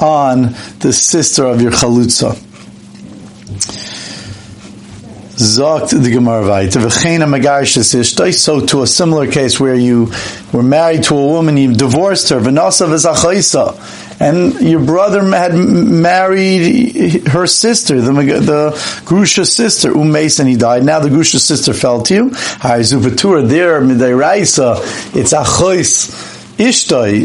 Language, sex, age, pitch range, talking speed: English, male, 50-69, 125-175 Hz, 110 wpm